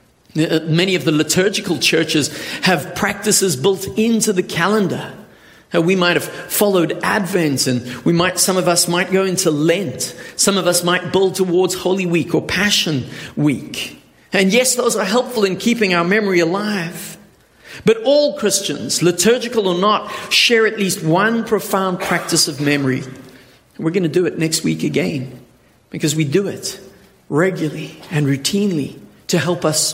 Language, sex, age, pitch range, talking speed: English, male, 50-69, 145-195 Hz, 160 wpm